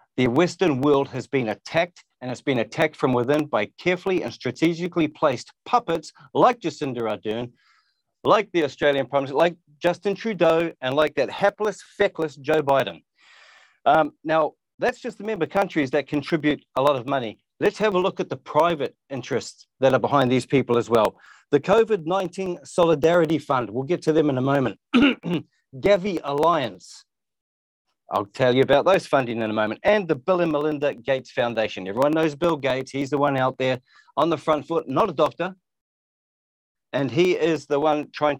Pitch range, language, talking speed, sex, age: 135-180 Hz, English, 180 wpm, male, 40-59